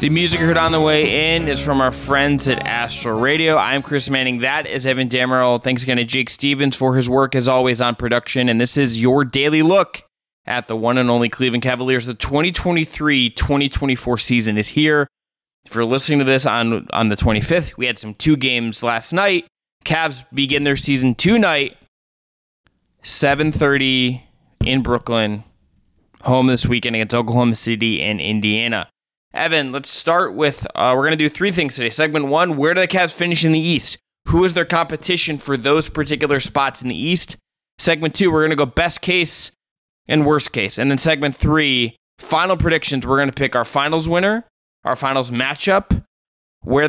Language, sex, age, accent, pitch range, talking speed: English, male, 20-39, American, 125-155 Hz, 185 wpm